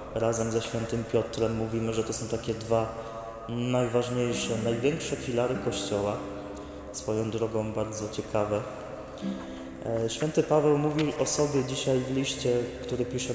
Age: 20-39